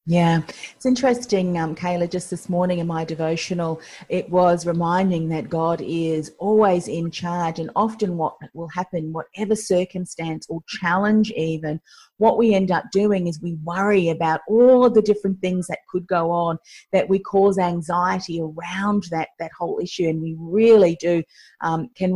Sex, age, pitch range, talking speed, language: female, 30-49, 165-195 Hz, 170 wpm, English